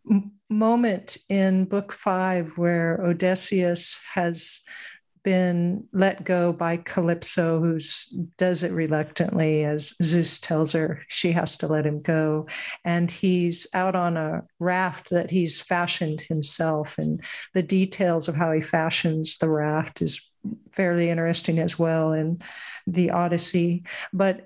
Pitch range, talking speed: 165-190 Hz, 130 wpm